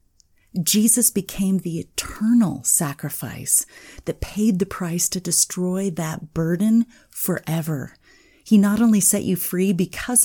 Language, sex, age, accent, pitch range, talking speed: English, female, 30-49, American, 155-195 Hz, 125 wpm